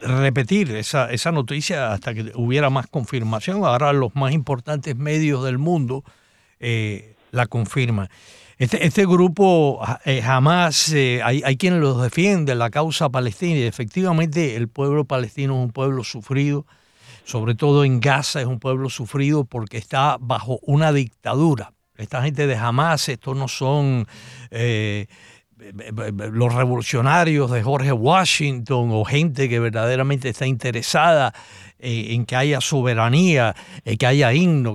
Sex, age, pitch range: male, 60-79, 115-150 Hz